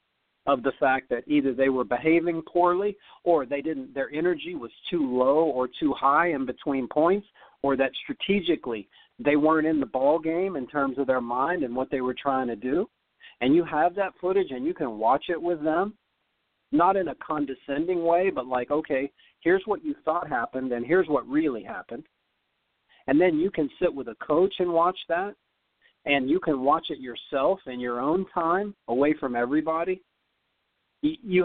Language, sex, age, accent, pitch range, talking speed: English, male, 50-69, American, 135-185 Hz, 190 wpm